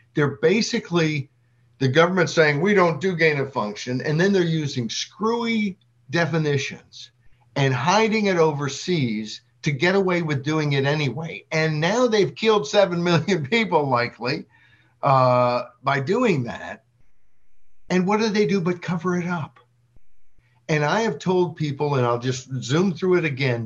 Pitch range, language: 120-175 Hz, English